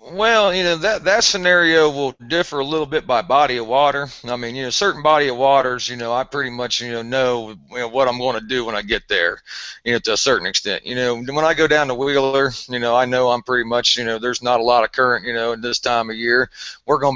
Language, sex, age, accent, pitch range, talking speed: English, male, 40-59, American, 120-145 Hz, 275 wpm